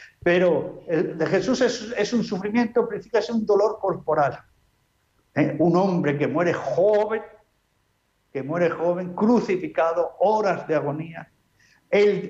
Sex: male